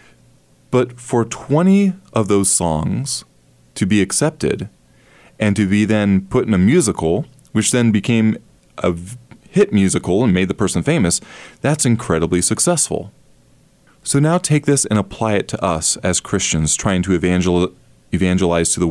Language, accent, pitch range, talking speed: English, American, 90-125 Hz, 150 wpm